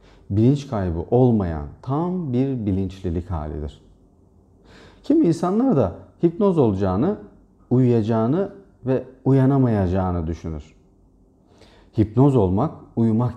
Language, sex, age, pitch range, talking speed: Turkish, male, 40-59, 95-130 Hz, 85 wpm